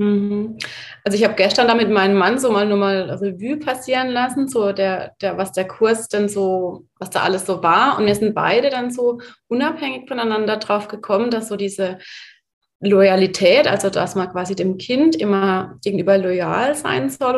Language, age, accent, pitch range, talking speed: German, 30-49, German, 185-230 Hz, 185 wpm